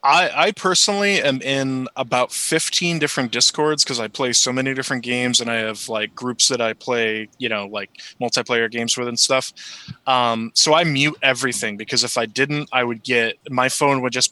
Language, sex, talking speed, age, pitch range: English, male, 200 wpm, 20-39, 120-155 Hz